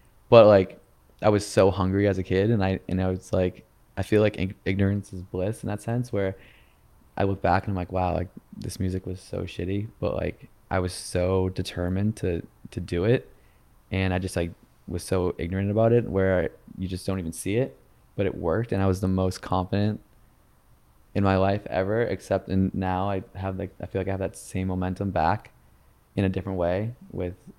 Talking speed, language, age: 215 wpm, English, 20-39